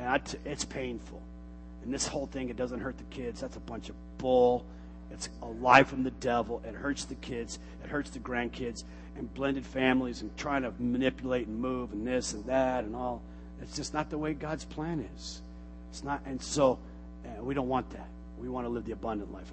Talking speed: 220 wpm